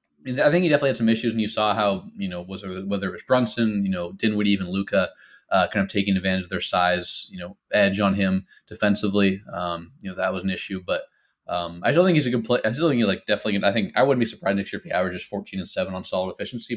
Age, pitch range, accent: 20-39, 95-115 Hz, American